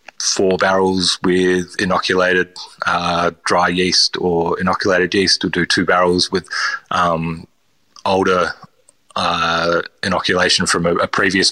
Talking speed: 120 wpm